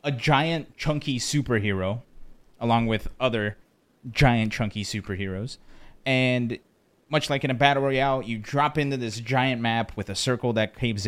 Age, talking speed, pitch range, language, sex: 30-49, 150 wpm, 115-145 Hz, English, male